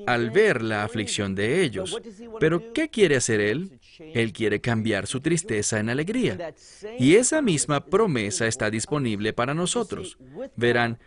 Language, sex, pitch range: English, male, 110-180 Hz